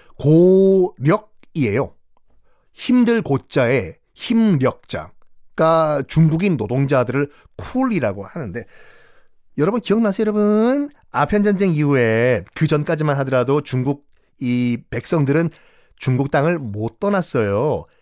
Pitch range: 130-195 Hz